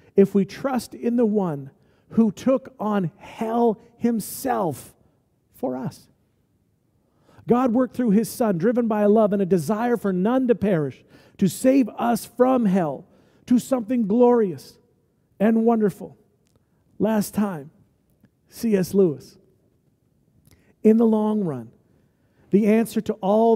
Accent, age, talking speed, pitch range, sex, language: American, 50-69, 130 wpm, 185-235 Hz, male, English